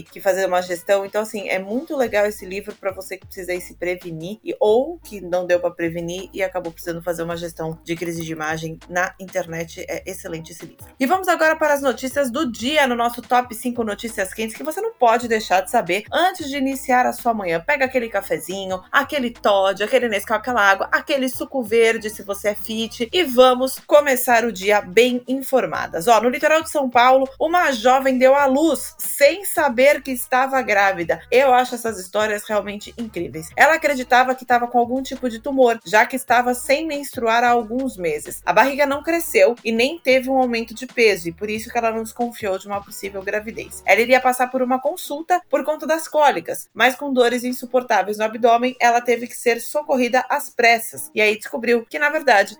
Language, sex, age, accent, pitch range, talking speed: Portuguese, female, 20-39, Brazilian, 200-265 Hz, 205 wpm